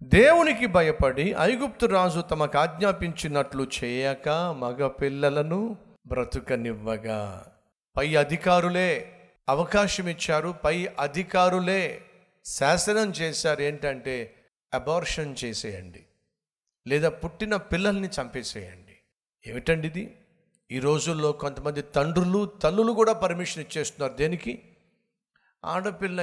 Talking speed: 85 wpm